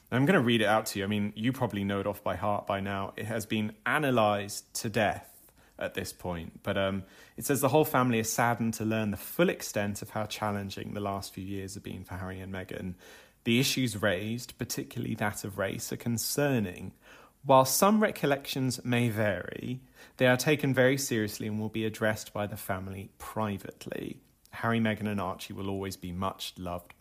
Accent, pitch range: British, 100-120 Hz